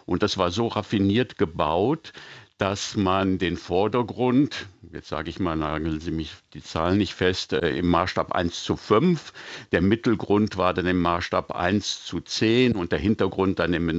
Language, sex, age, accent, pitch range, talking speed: German, male, 60-79, German, 90-115 Hz, 175 wpm